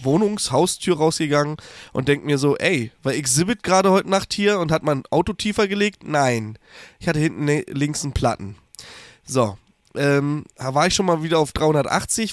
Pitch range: 125-155 Hz